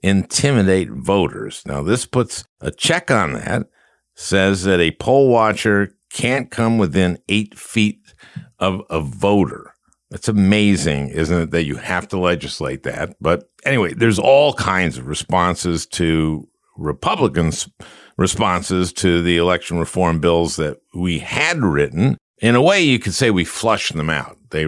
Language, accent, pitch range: English, American, 85-115 Hz